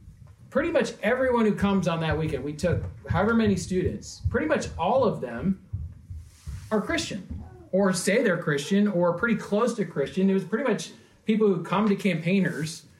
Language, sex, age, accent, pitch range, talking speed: English, male, 40-59, American, 170-220 Hz, 175 wpm